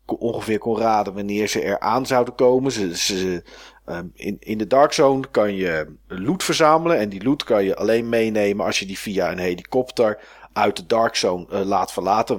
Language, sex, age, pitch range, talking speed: Dutch, male, 40-59, 100-130 Hz, 195 wpm